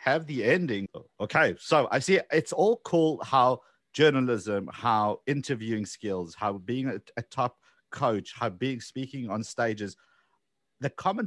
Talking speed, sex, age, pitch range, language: 150 wpm, male, 50-69, 105-140 Hz, English